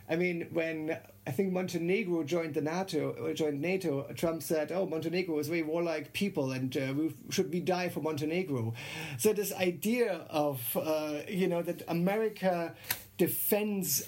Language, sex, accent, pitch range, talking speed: English, male, German, 130-175 Hz, 165 wpm